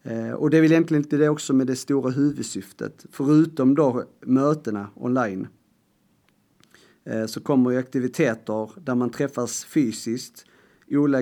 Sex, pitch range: male, 115-145 Hz